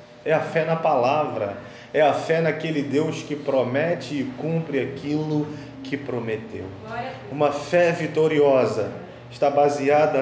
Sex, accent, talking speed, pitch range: male, Brazilian, 130 wpm, 125-155 Hz